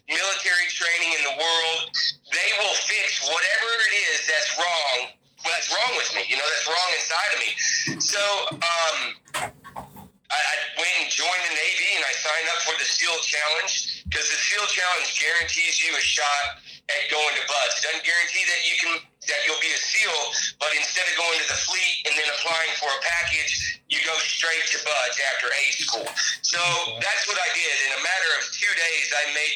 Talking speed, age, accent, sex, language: 195 wpm, 40-59, American, male, English